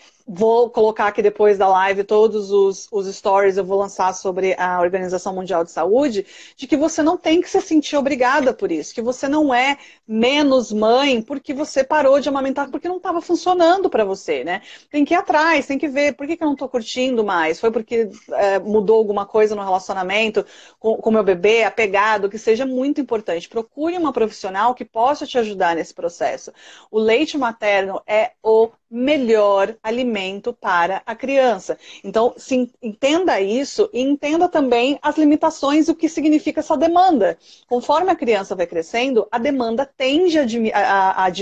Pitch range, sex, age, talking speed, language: 210-300 Hz, female, 40-59, 180 wpm, Portuguese